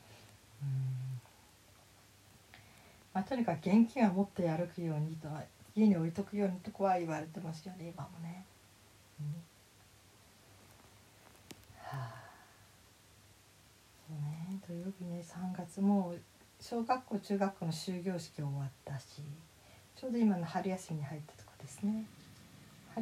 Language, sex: Japanese, female